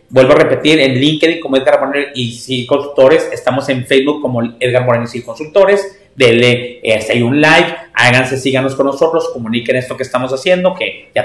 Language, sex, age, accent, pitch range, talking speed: Spanish, male, 40-59, Mexican, 130-160 Hz, 185 wpm